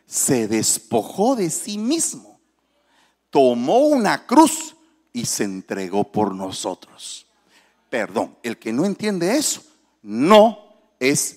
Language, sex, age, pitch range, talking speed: Spanish, male, 40-59, 180-255 Hz, 110 wpm